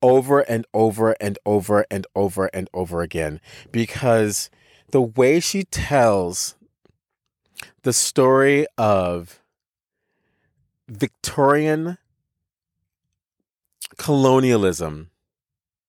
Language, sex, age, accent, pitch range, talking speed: English, male, 40-59, American, 105-135 Hz, 75 wpm